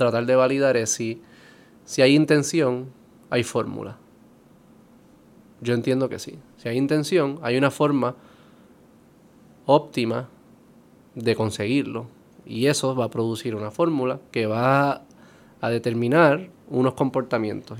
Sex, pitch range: male, 115-140 Hz